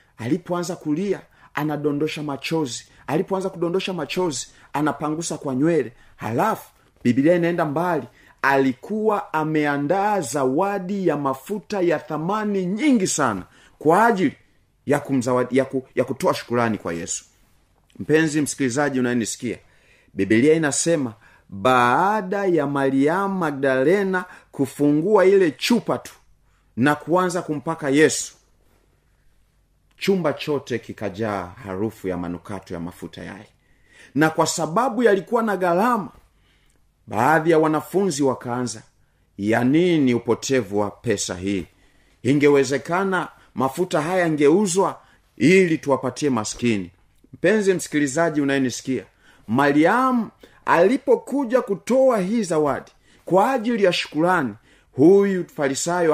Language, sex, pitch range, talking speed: Swahili, male, 125-180 Hz, 100 wpm